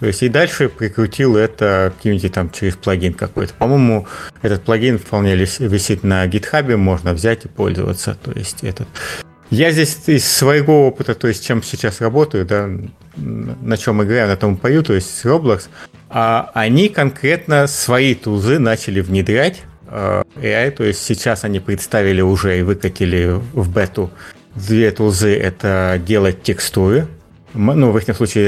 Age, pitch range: 30-49, 95-135 Hz